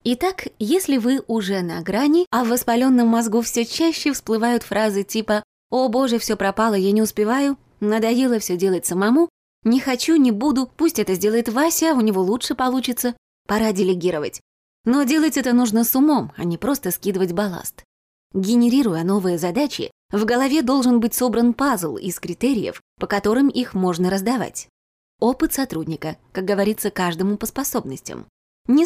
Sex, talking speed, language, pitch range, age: female, 160 wpm, Russian, 195-255 Hz, 20-39